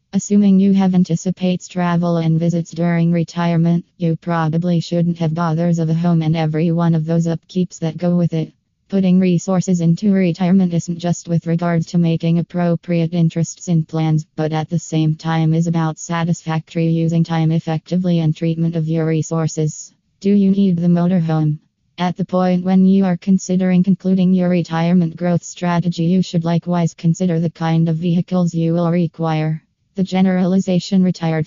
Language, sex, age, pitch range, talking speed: English, female, 20-39, 160-175 Hz, 170 wpm